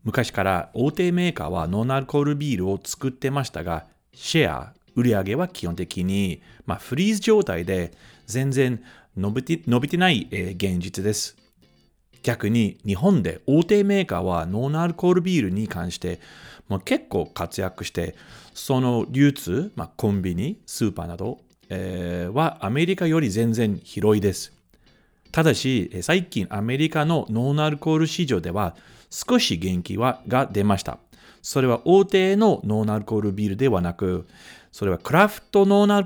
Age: 40-59